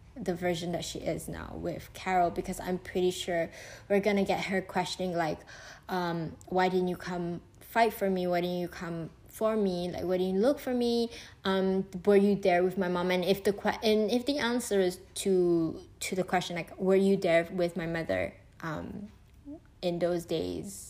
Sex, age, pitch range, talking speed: female, 10-29, 170-215 Hz, 200 wpm